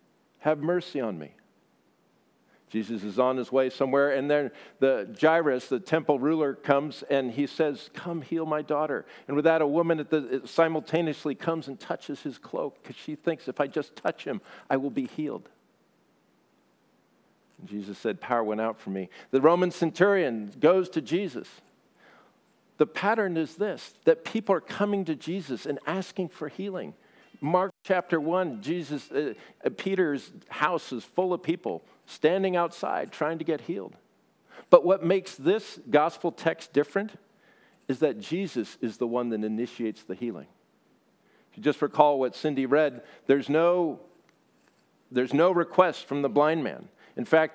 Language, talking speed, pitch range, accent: English, 165 wpm, 140-175 Hz, American